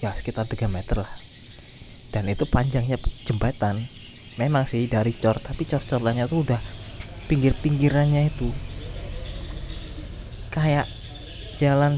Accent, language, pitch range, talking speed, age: native, Indonesian, 110-135 Hz, 105 wpm, 20-39